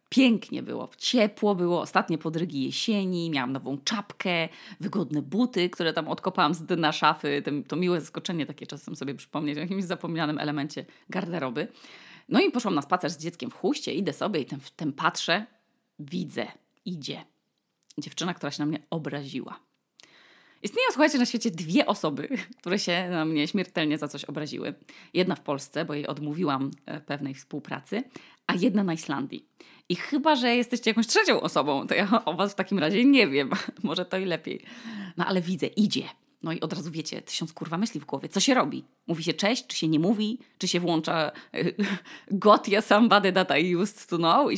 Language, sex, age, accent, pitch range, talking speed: Polish, female, 30-49, native, 155-215 Hz, 180 wpm